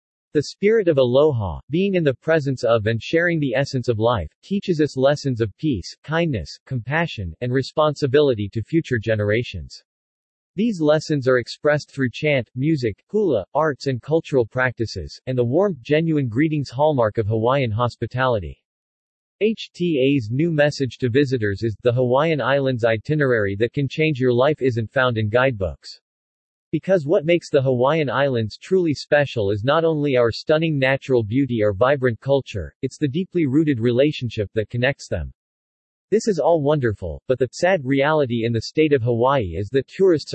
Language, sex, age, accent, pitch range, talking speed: English, male, 40-59, American, 120-150 Hz, 160 wpm